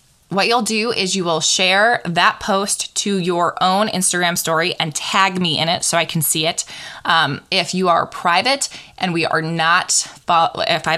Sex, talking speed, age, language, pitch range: female, 190 wpm, 20-39, English, 175-235 Hz